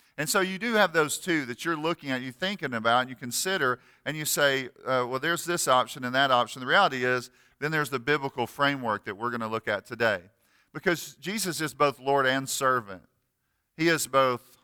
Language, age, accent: English, 40-59, American